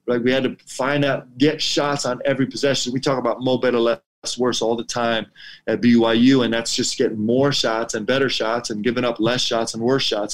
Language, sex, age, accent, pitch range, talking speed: English, male, 30-49, American, 110-145 Hz, 230 wpm